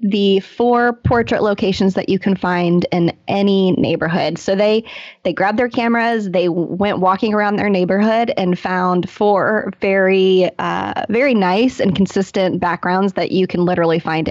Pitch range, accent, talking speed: 175-220 Hz, American, 160 wpm